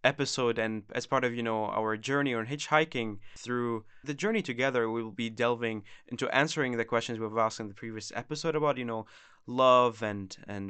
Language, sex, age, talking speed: English, male, 20-39, 195 wpm